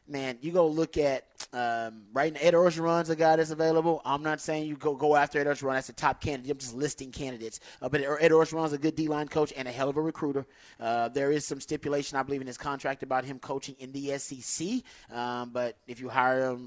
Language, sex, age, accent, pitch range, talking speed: English, male, 30-49, American, 130-150 Hz, 240 wpm